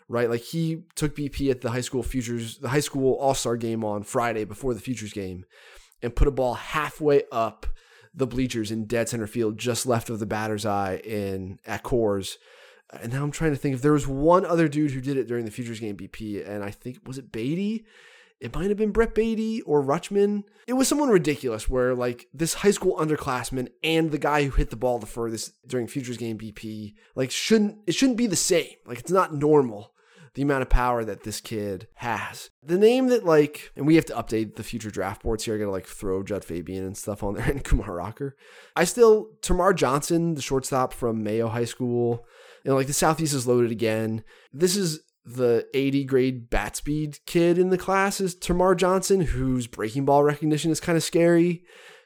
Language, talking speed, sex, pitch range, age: English, 215 wpm, male, 115-160 Hz, 20-39